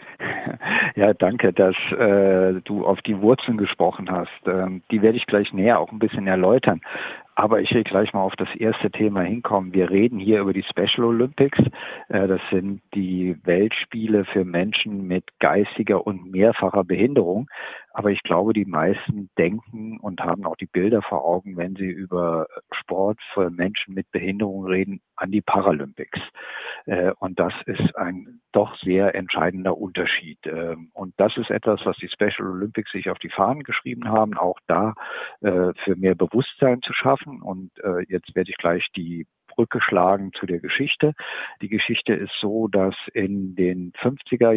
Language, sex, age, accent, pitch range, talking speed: German, male, 50-69, German, 95-110 Hz, 165 wpm